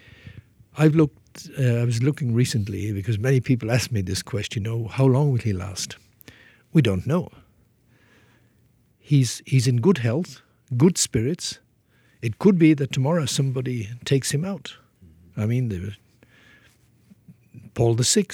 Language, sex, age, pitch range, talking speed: English, male, 60-79, 110-140 Hz, 155 wpm